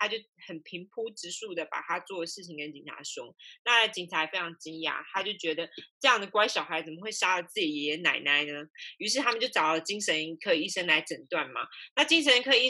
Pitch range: 170-220 Hz